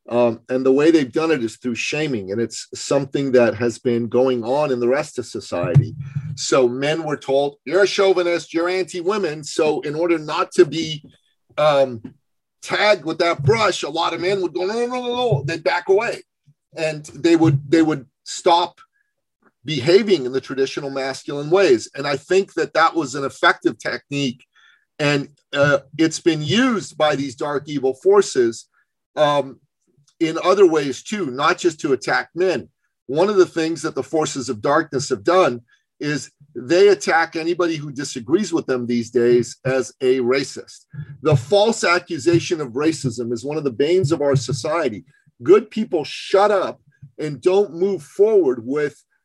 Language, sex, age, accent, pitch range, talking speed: English, male, 40-59, American, 135-180 Hz, 175 wpm